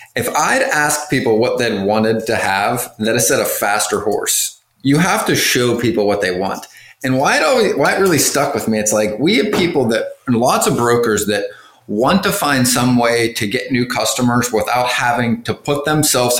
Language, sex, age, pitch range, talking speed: English, male, 30-49, 110-155 Hz, 205 wpm